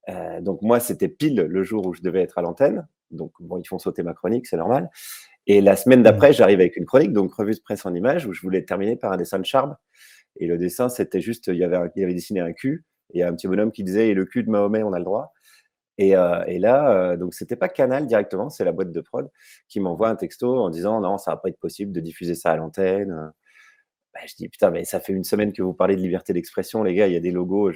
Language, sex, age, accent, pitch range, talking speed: French, male, 30-49, French, 90-105 Hz, 280 wpm